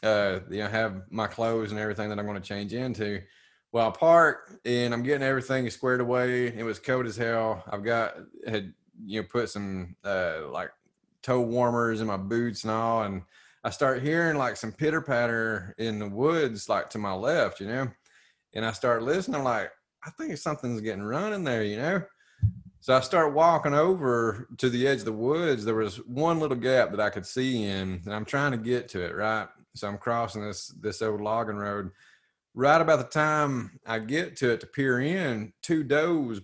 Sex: male